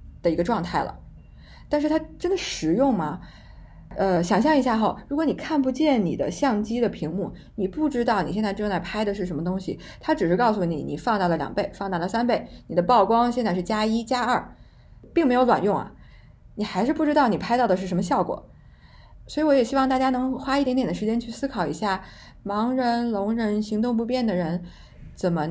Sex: female